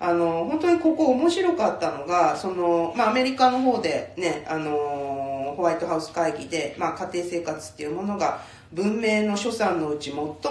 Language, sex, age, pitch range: Japanese, female, 40-59, 135-210 Hz